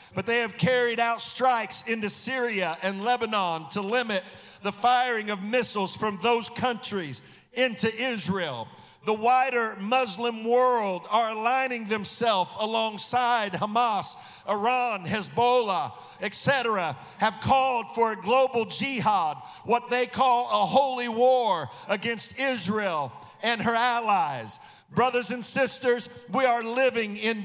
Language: English